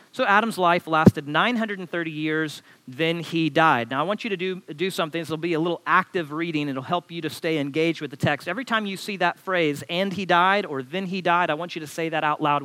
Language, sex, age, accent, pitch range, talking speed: English, male, 40-59, American, 155-200 Hz, 255 wpm